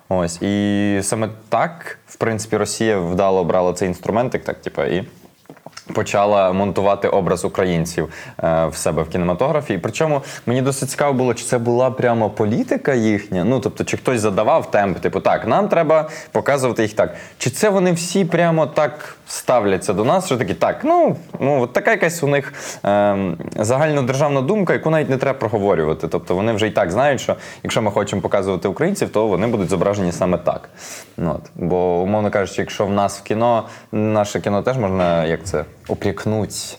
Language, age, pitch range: Ukrainian, 20-39, 95-135 Hz